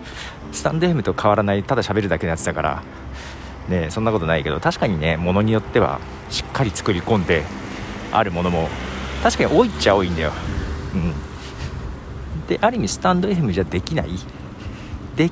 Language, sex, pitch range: Japanese, male, 80-115 Hz